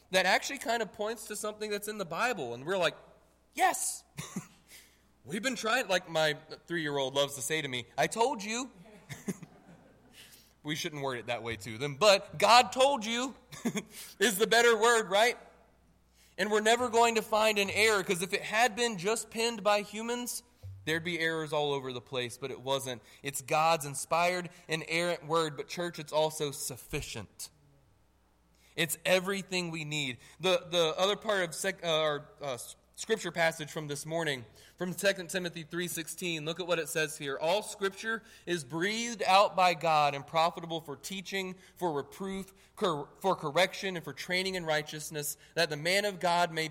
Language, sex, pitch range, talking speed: English, male, 145-200 Hz, 180 wpm